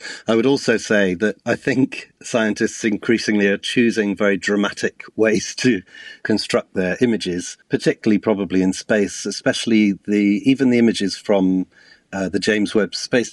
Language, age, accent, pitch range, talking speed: English, 40-59, British, 95-110 Hz, 150 wpm